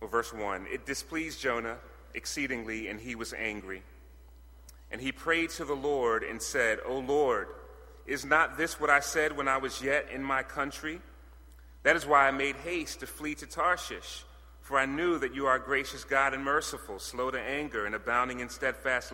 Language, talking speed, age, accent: English, 190 wpm, 30-49, American